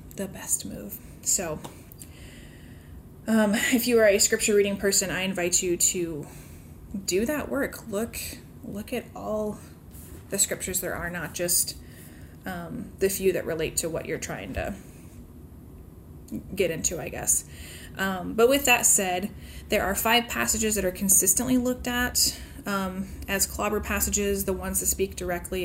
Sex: female